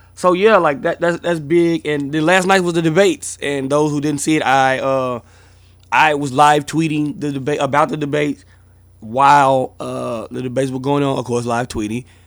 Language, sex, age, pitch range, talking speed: English, male, 20-39, 110-140 Hz, 205 wpm